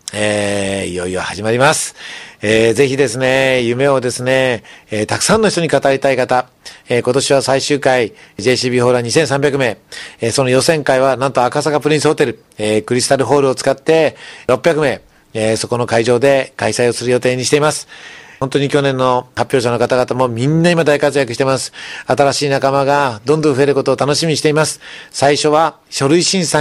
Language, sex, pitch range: Japanese, male, 120-150 Hz